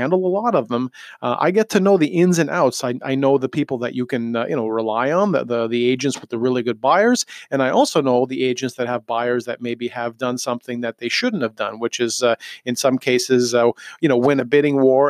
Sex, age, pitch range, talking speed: male, 40-59, 120-160 Hz, 270 wpm